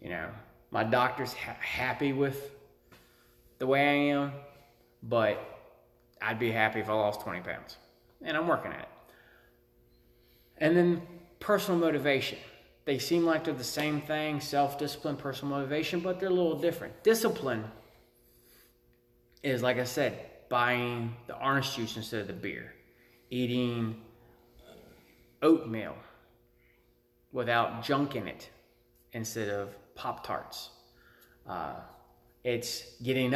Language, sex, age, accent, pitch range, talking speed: English, male, 20-39, American, 110-150 Hz, 125 wpm